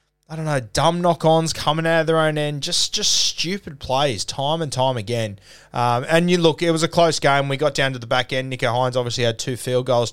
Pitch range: 115-140 Hz